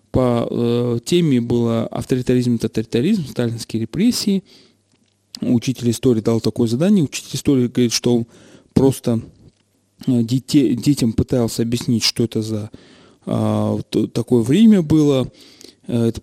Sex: male